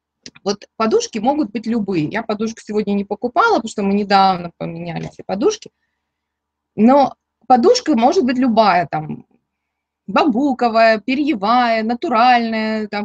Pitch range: 195-240 Hz